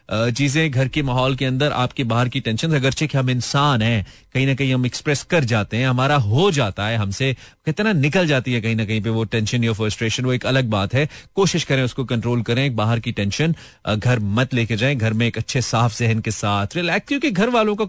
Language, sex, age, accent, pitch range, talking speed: Hindi, male, 30-49, native, 115-140 Hz, 205 wpm